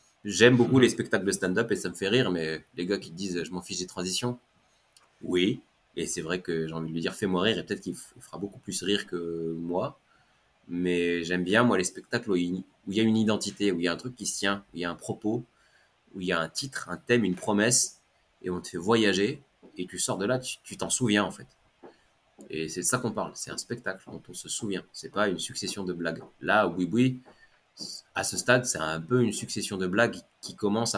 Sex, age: male, 30-49